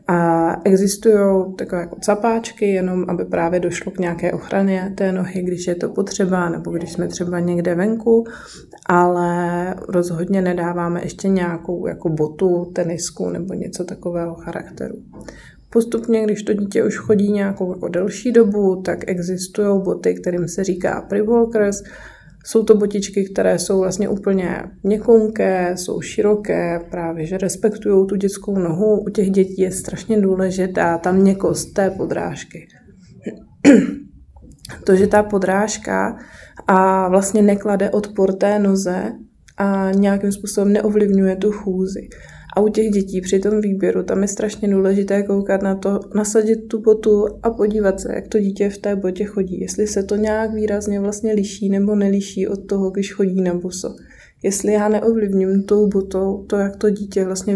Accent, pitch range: native, 185-205 Hz